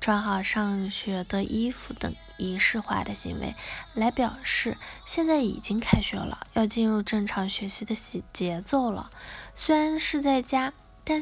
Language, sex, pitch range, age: Chinese, female, 200-275 Hz, 10-29